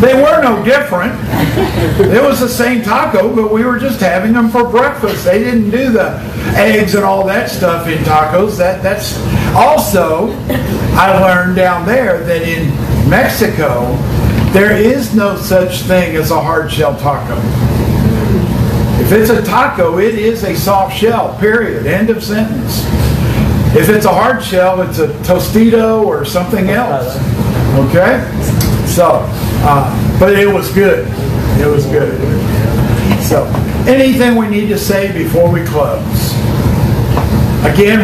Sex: male